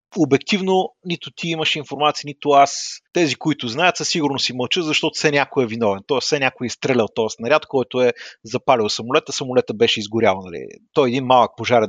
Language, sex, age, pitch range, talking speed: Bulgarian, male, 30-49, 120-165 Hz, 195 wpm